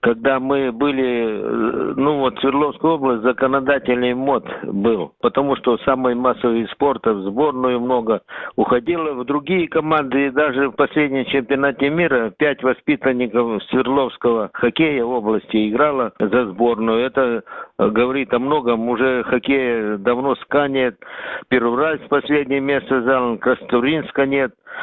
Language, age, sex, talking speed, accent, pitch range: Russian, 50-69, male, 120 wpm, native, 120-140 Hz